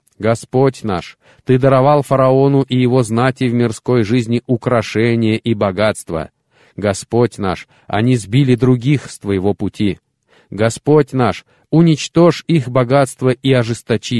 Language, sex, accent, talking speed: Russian, male, native, 125 wpm